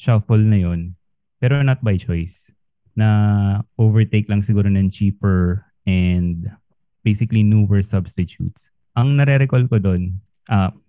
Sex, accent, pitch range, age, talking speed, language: male, native, 95-110 Hz, 20-39, 120 wpm, Filipino